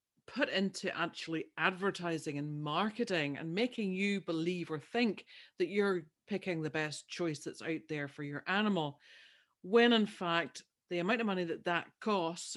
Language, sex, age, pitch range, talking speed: English, female, 50-69, 160-215 Hz, 160 wpm